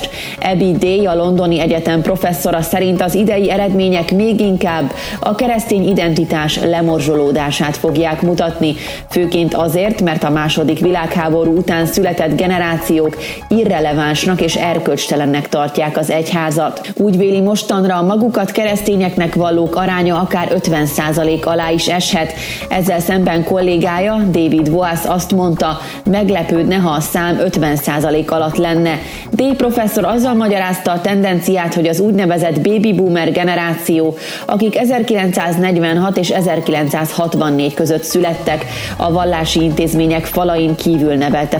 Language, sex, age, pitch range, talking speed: Hungarian, female, 30-49, 165-190 Hz, 120 wpm